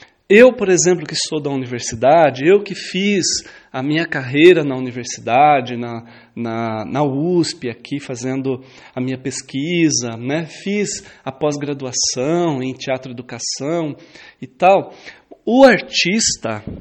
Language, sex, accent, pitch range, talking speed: Portuguese, male, Brazilian, 135-185 Hz, 120 wpm